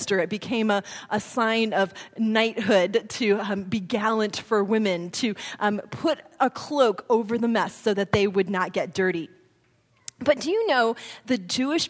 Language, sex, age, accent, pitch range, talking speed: English, female, 30-49, American, 210-290 Hz, 170 wpm